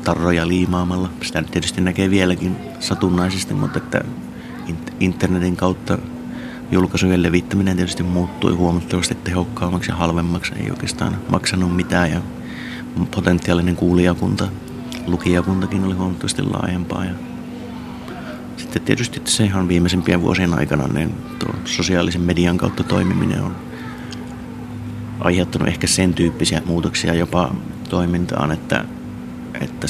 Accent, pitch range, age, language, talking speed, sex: native, 85-95 Hz, 30-49, Finnish, 105 wpm, male